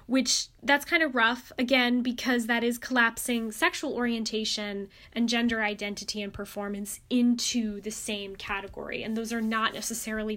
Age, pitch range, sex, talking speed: 10-29, 215-275 Hz, female, 150 wpm